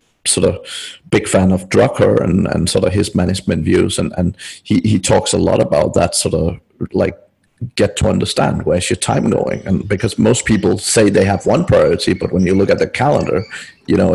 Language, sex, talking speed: English, male, 210 wpm